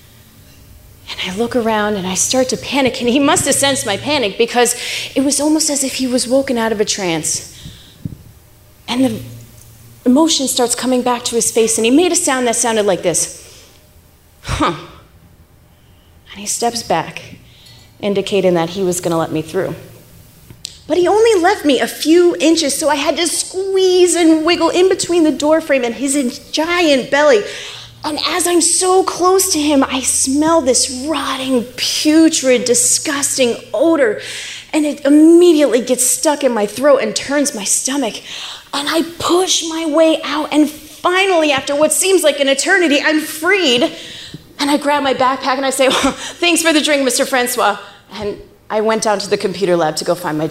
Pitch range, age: 205-310 Hz, 30-49